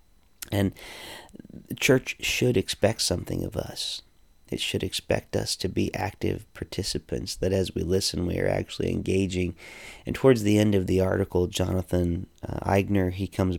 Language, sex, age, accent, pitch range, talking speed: English, male, 40-59, American, 90-100 Hz, 160 wpm